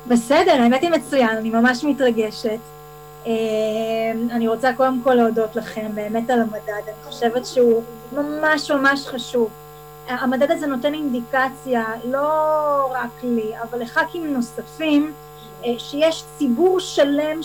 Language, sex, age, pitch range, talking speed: Hebrew, female, 30-49, 230-280 Hz, 120 wpm